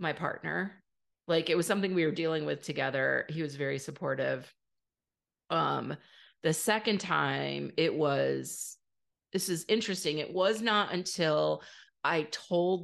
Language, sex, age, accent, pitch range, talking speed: English, female, 30-49, American, 150-185 Hz, 140 wpm